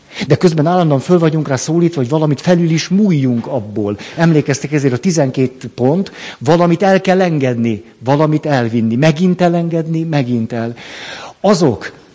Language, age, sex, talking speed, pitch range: Hungarian, 50-69, male, 145 wpm, 120-165 Hz